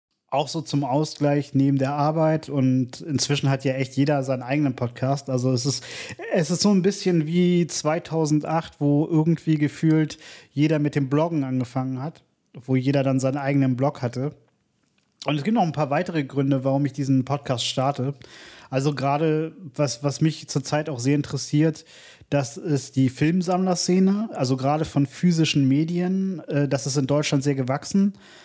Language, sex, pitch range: German, male, 140-155 Hz